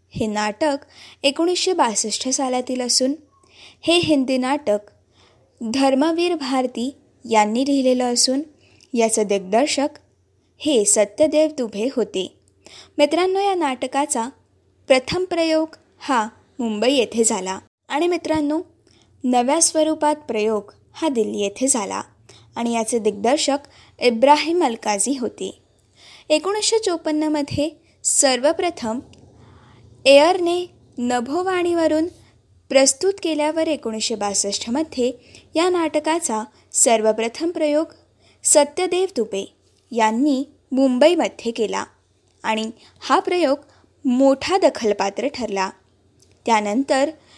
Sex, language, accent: female, Marathi, native